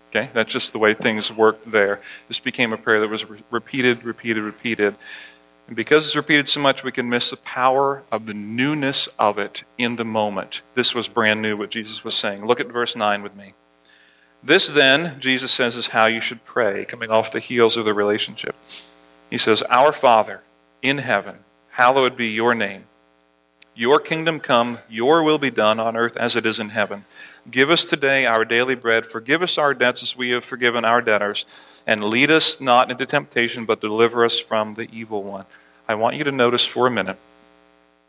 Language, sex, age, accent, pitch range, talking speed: English, male, 40-59, American, 95-125 Hz, 200 wpm